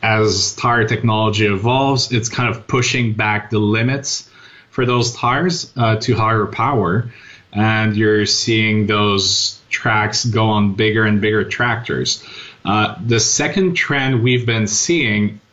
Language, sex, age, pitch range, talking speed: English, male, 30-49, 105-120 Hz, 140 wpm